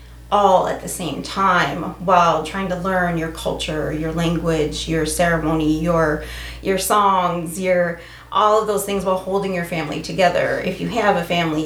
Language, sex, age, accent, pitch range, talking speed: English, female, 30-49, American, 165-195 Hz, 170 wpm